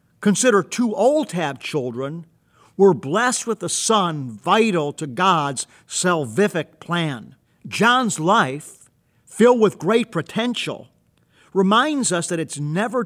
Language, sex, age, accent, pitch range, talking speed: English, male, 50-69, American, 150-205 Hz, 120 wpm